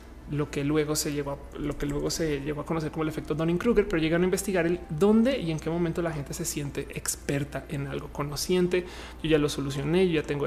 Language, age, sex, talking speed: Spanish, 30-49, male, 240 wpm